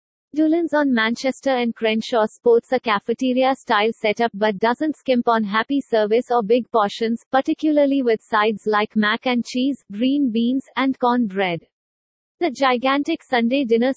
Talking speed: 140 wpm